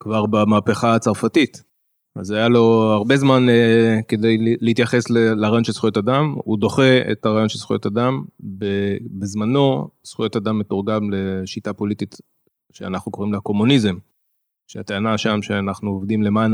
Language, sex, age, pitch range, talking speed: Hebrew, male, 20-39, 105-120 Hz, 140 wpm